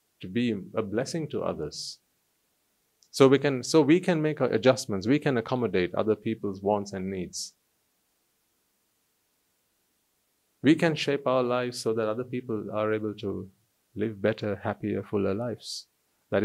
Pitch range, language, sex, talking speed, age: 105-140 Hz, English, male, 145 wpm, 30-49